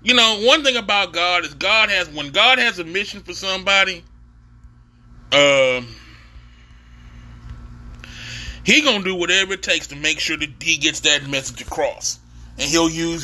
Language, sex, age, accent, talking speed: English, male, 30-49, American, 160 wpm